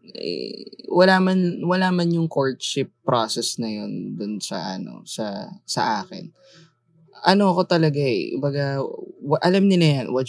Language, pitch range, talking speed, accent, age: Filipino, 130-175 Hz, 150 wpm, native, 20-39